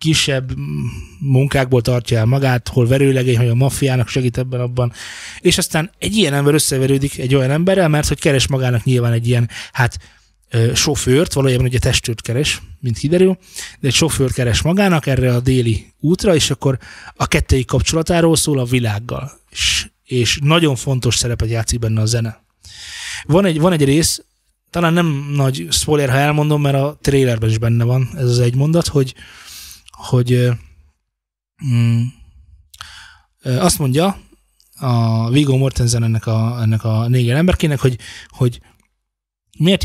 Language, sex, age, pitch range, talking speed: Hungarian, male, 20-39, 115-145 Hz, 155 wpm